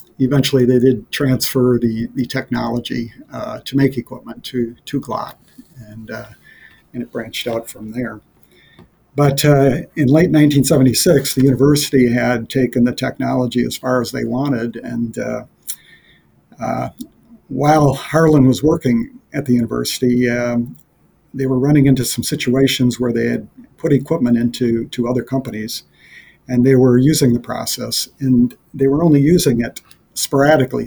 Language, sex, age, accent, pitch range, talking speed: English, male, 50-69, American, 120-135 Hz, 150 wpm